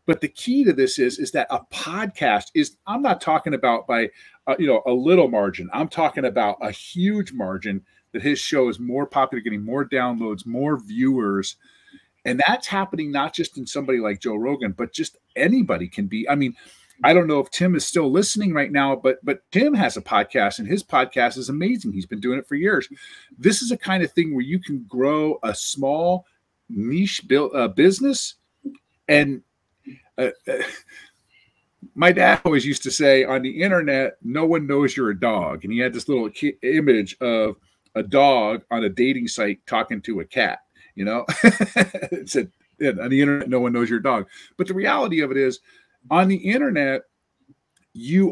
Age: 40-59